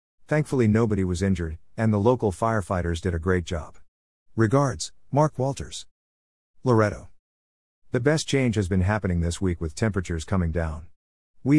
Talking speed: 150 wpm